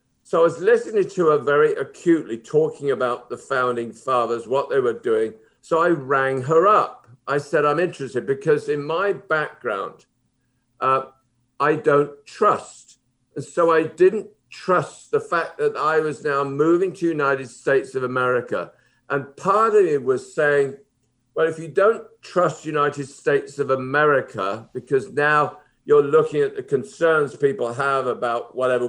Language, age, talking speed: English, 50-69, 160 wpm